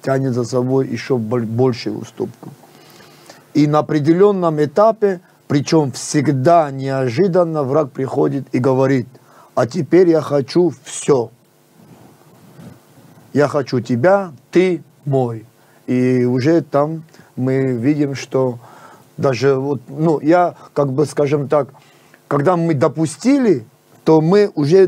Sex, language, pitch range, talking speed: male, Russian, 130-165 Hz, 115 wpm